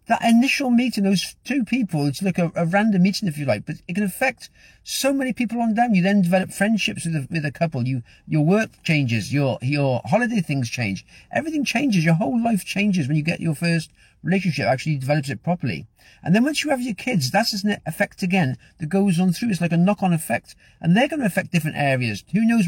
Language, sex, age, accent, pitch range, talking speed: English, male, 50-69, British, 140-195 Hz, 225 wpm